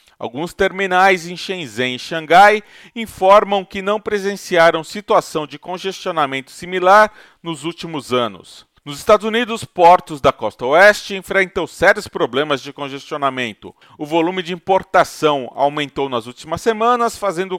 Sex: male